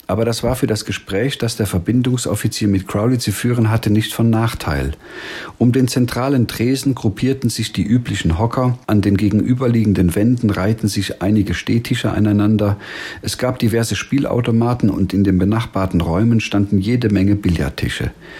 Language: German